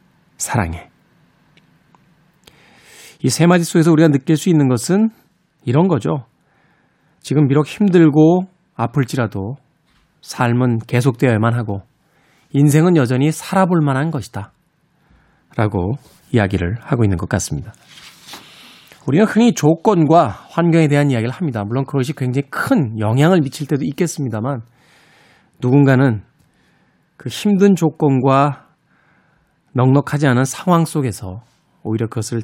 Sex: male